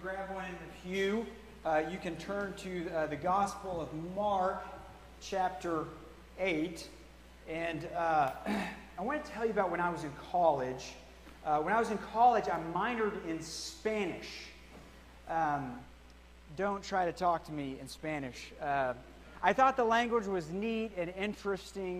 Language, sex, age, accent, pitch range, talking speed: English, male, 40-59, American, 155-195 Hz, 160 wpm